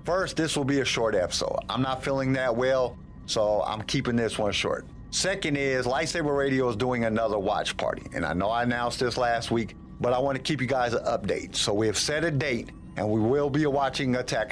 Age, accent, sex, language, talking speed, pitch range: 50-69, American, male, English, 230 wpm, 110-135 Hz